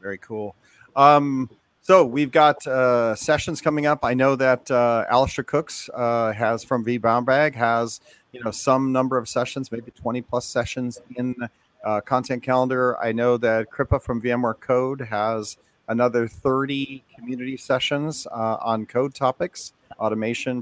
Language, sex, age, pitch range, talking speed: English, male, 40-59, 115-140 Hz, 150 wpm